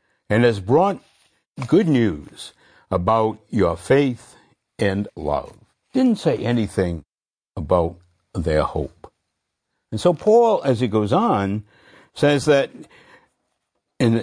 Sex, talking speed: male, 110 wpm